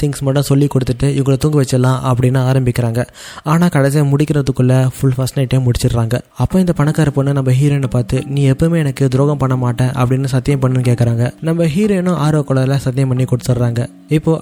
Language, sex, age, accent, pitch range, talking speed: Tamil, male, 20-39, native, 130-155 Hz, 125 wpm